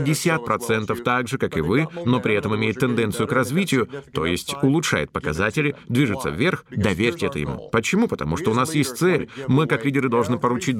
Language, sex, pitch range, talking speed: Russian, male, 115-150 Hz, 185 wpm